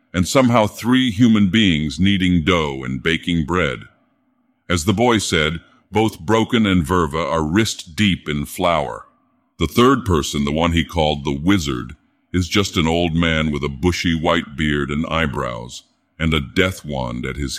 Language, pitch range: English, 75-100 Hz